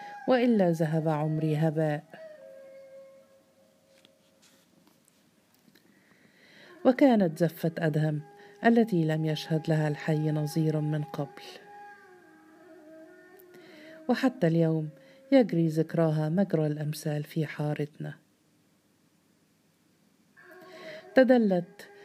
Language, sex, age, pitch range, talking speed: Arabic, female, 50-69, 155-235 Hz, 65 wpm